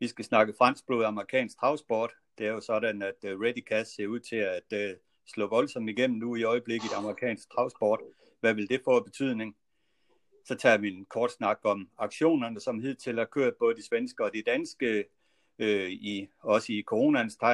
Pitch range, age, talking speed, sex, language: 105-130 Hz, 60-79, 185 wpm, male, Danish